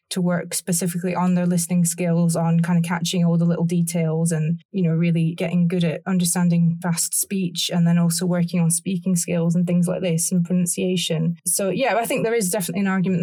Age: 20-39